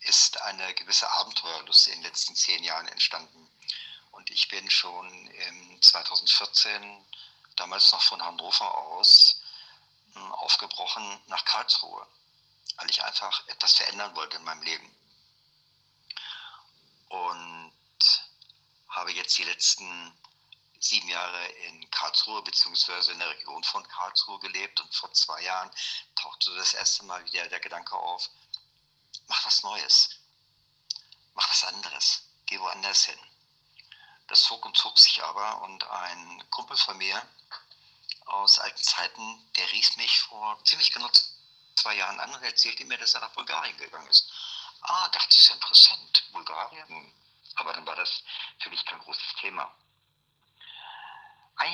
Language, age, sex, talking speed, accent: German, 50-69, male, 140 wpm, German